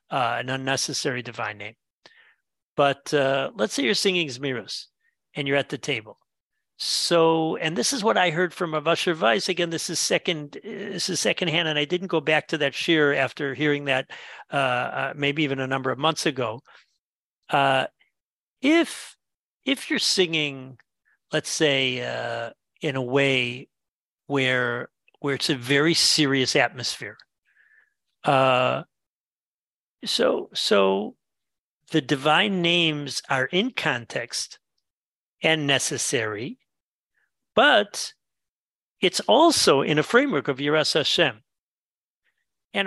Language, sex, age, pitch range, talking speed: English, male, 50-69, 140-185 Hz, 130 wpm